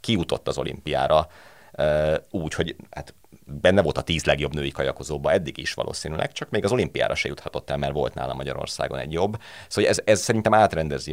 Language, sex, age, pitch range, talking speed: Hungarian, male, 30-49, 70-90 Hz, 185 wpm